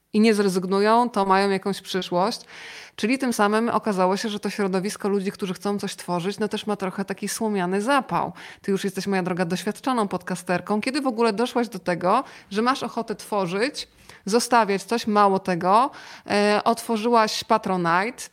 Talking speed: 165 wpm